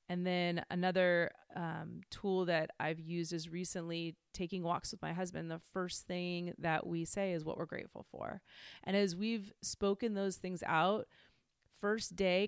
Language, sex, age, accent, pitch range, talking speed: English, female, 30-49, American, 170-200 Hz, 170 wpm